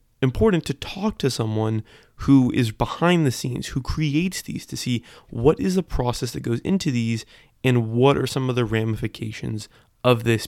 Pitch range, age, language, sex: 110-140 Hz, 20-39, English, male